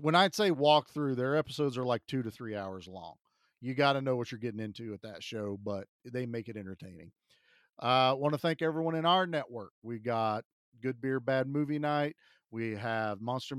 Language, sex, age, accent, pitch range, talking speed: English, male, 40-59, American, 110-140 Hz, 210 wpm